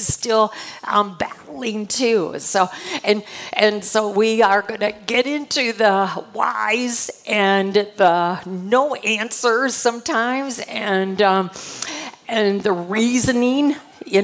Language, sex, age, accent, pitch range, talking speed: English, female, 50-69, American, 210-250 Hz, 110 wpm